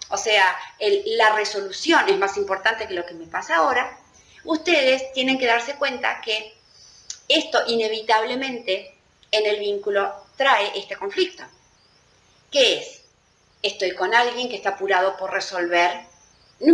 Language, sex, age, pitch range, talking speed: Spanish, female, 30-49, 200-320 Hz, 140 wpm